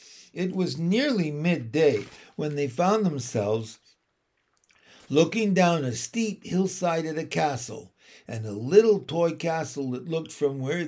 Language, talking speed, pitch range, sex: English, 140 wpm, 140-195 Hz, male